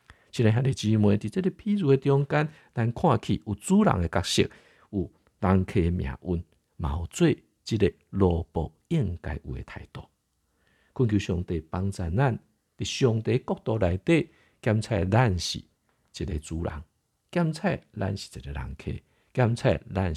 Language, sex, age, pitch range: Chinese, male, 50-69, 80-115 Hz